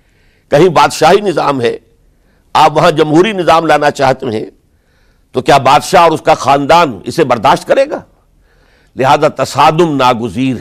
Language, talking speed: Urdu, 140 wpm